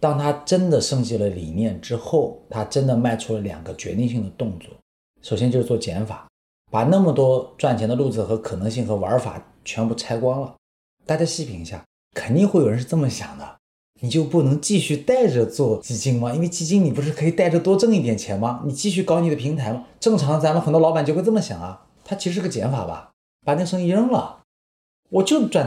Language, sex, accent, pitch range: Chinese, male, native, 105-155 Hz